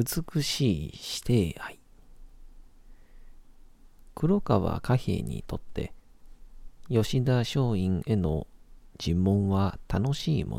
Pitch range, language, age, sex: 90-115 Hz, Japanese, 40-59, male